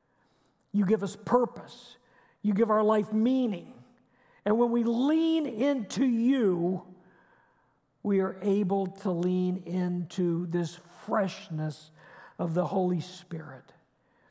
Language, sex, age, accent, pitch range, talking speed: English, male, 50-69, American, 185-250 Hz, 115 wpm